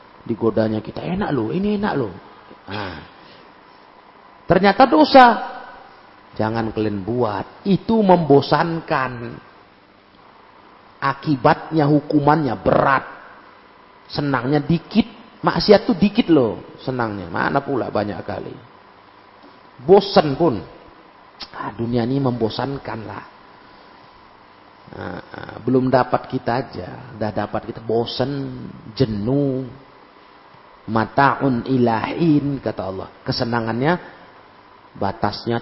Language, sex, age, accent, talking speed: Indonesian, male, 40-59, native, 90 wpm